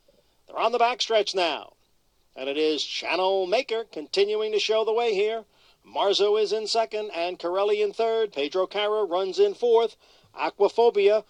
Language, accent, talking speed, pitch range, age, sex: English, American, 165 wpm, 205-250 Hz, 50-69, male